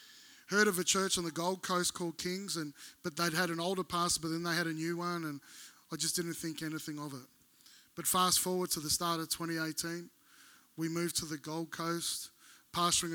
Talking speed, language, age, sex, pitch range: 215 wpm, English, 20-39, male, 160-190 Hz